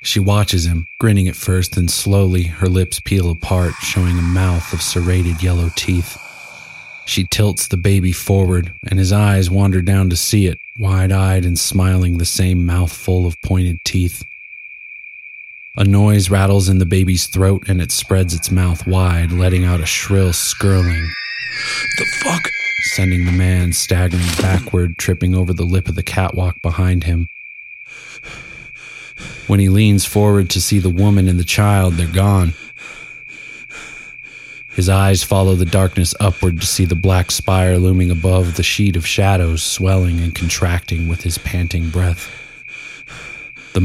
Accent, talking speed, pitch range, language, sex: American, 155 wpm, 90-100 Hz, English, male